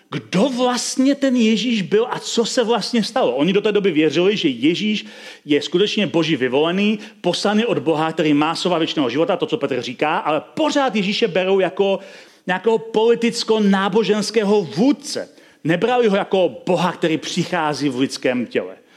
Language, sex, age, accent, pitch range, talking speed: Czech, male, 40-59, native, 170-225 Hz, 160 wpm